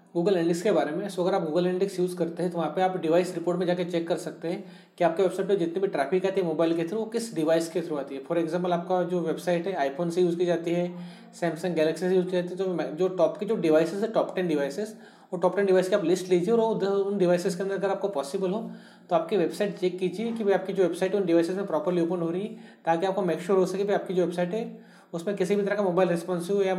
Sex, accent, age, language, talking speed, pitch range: male, native, 30-49, Hindi, 280 wpm, 170-195 Hz